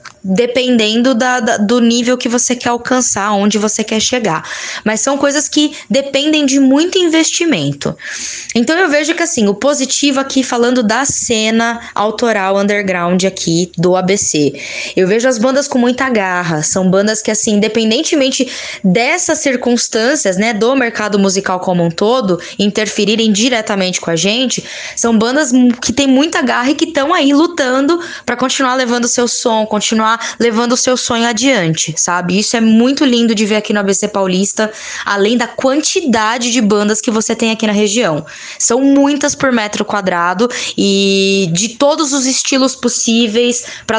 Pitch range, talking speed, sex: 210-265 Hz, 160 wpm, female